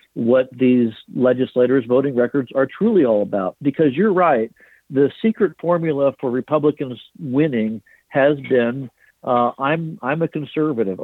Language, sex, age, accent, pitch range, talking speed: English, male, 60-79, American, 125-155 Hz, 135 wpm